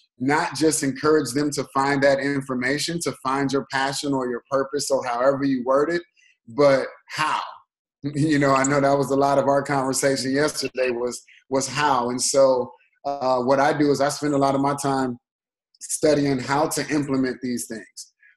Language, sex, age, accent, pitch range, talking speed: English, male, 20-39, American, 135-150 Hz, 185 wpm